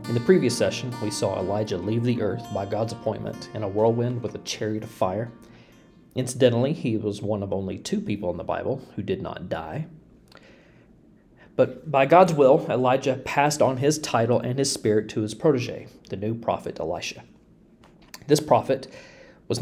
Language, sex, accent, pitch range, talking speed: English, male, American, 105-135 Hz, 175 wpm